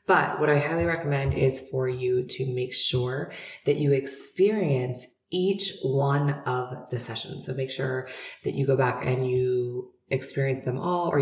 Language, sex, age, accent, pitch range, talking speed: English, female, 20-39, American, 125-155 Hz, 170 wpm